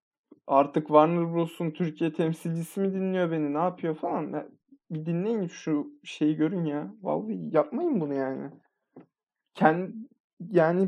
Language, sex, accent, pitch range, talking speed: Turkish, male, native, 155-200 Hz, 130 wpm